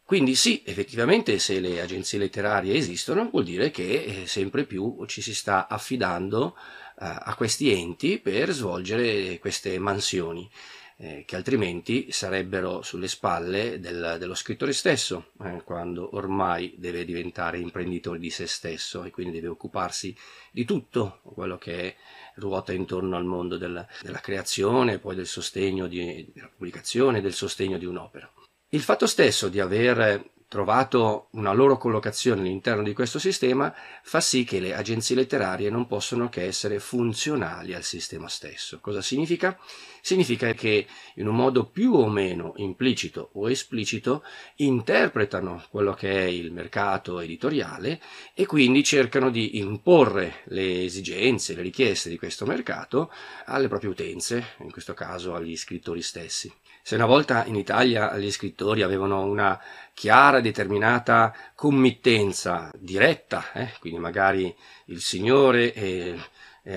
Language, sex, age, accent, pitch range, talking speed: Italian, male, 30-49, native, 90-120 Hz, 145 wpm